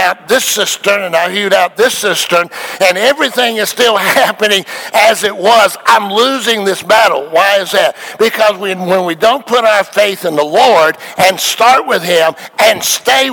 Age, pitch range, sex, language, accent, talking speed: 60-79, 135-190 Hz, male, English, American, 175 wpm